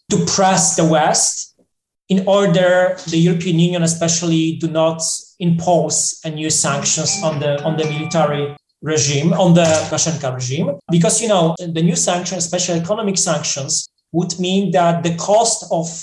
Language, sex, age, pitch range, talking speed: Polish, male, 30-49, 155-180 Hz, 155 wpm